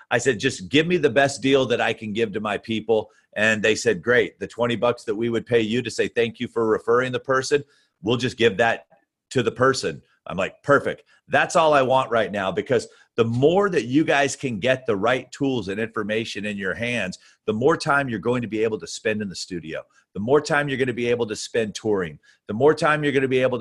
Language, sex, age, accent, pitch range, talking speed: English, male, 40-59, American, 115-140 Hz, 250 wpm